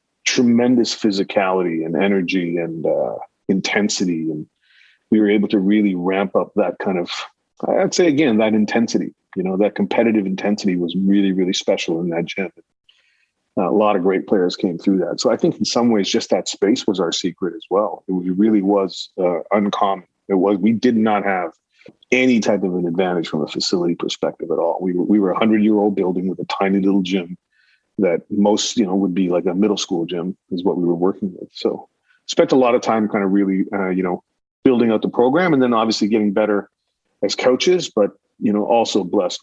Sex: male